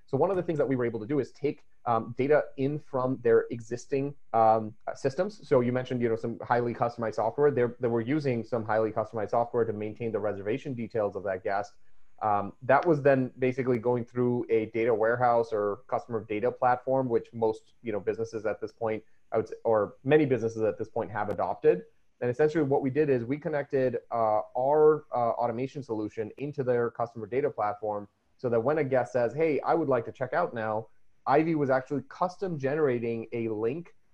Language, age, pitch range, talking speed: English, 30-49, 115-135 Hz, 205 wpm